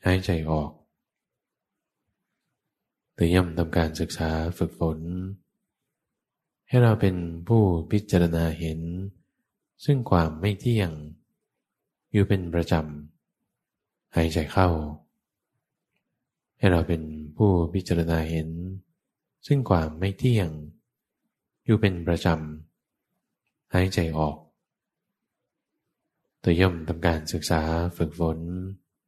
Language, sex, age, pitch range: English, male, 20-39, 80-95 Hz